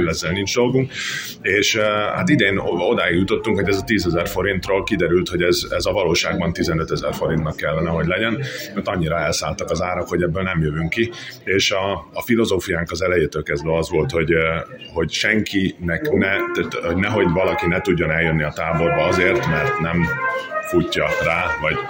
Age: 30-49